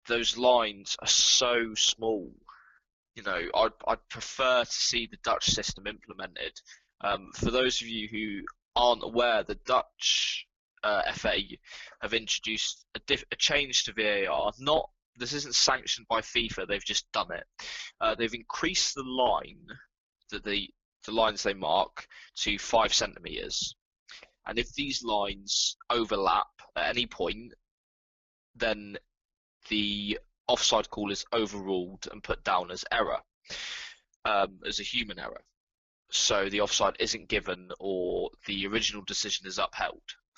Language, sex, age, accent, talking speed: English, male, 20-39, British, 140 wpm